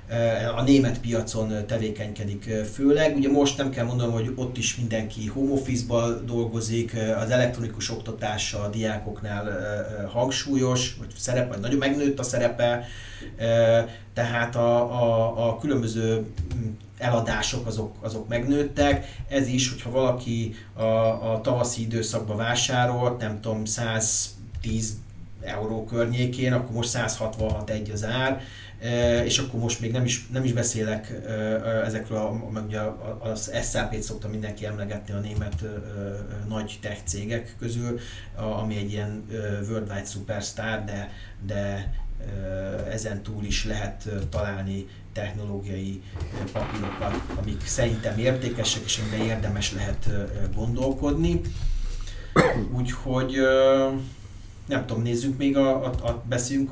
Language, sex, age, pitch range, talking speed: Hungarian, male, 30-49, 105-120 Hz, 125 wpm